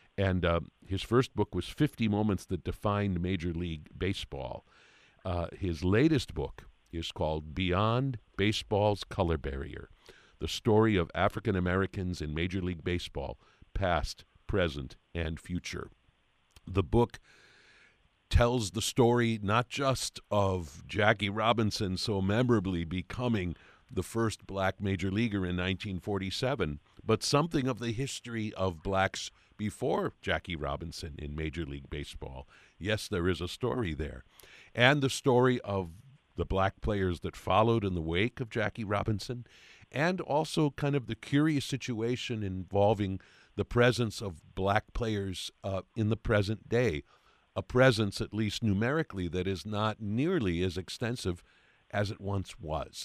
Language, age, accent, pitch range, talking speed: English, 50-69, American, 90-115 Hz, 140 wpm